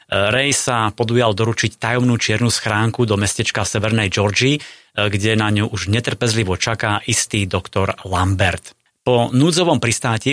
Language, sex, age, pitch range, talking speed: Slovak, male, 30-49, 100-120 Hz, 135 wpm